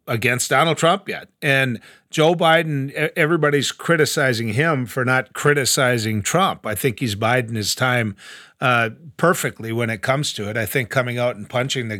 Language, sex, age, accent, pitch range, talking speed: English, male, 40-59, American, 130-165 Hz, 170 wpm